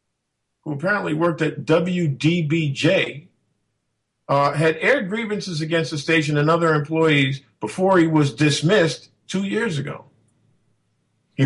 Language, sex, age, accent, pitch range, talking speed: English, male, 50-69, American, 140-175 Hz, 120 wpm